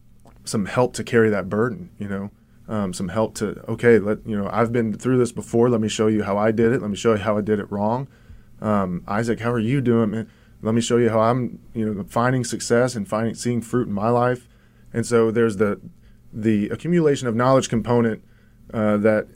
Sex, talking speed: male, 225 wpm